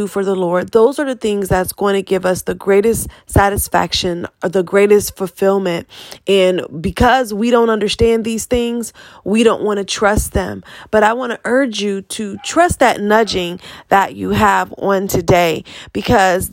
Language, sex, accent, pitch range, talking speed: English, female, American, 185-215 Hz, 175 wpm